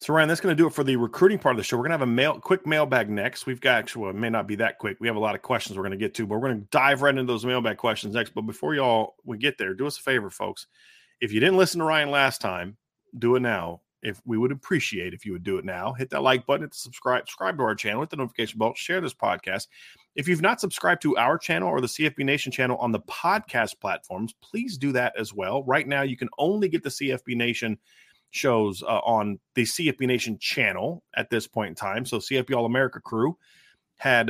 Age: 30-49